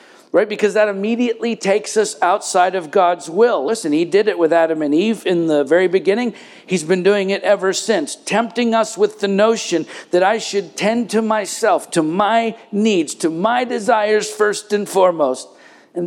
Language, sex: English, male